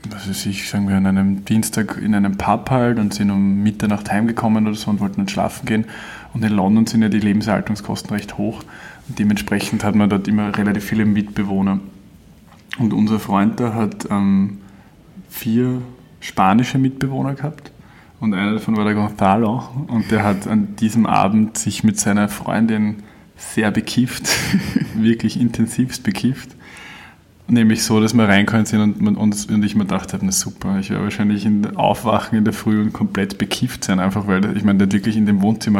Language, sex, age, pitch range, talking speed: German, male, 20-39, 100-115 Hz, 175 wpm